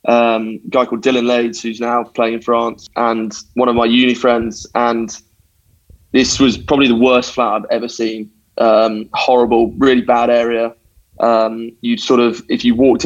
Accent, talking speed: British, 175 wpm